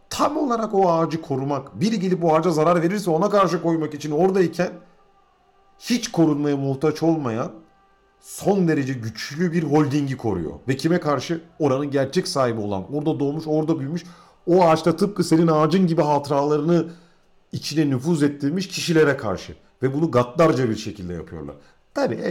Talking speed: 150 wpm